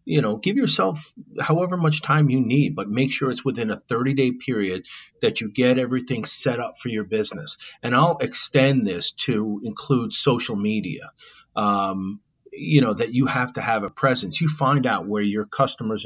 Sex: male